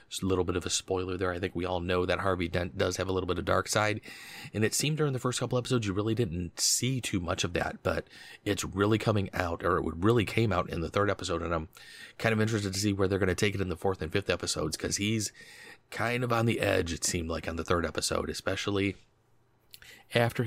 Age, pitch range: 30-49, 90-105 Hz